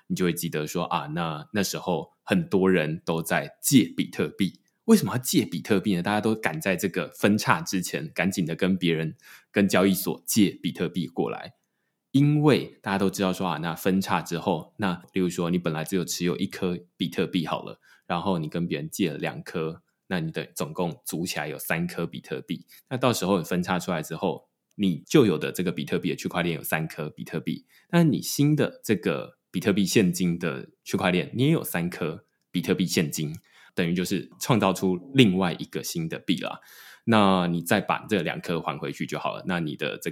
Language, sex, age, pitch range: Chinese, male, 20-39, 85-105 Hz